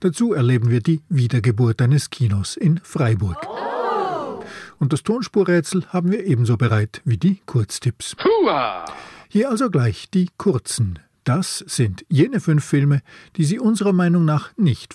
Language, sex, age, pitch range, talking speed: German, male, 50-69, 115-175 Hz, 140 wpm